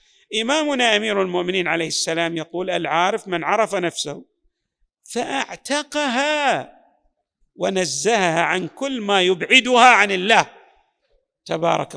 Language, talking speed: Arabic, 95 wpm